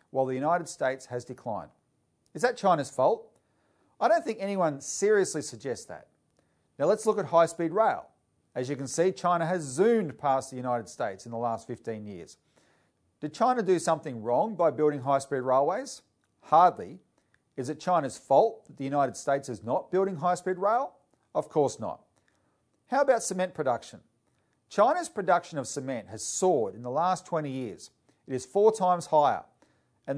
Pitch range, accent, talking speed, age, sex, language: 130-185 Hz, Australian, 170 wpm, 40-59, male, English